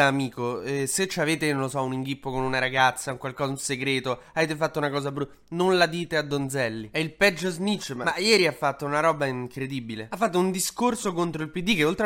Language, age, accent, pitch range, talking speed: Italian, 20-39, native, 130-170 Hz, 235 wpm